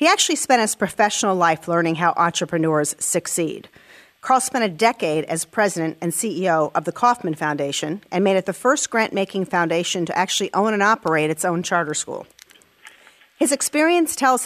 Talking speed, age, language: 170 wpm, 40-59, English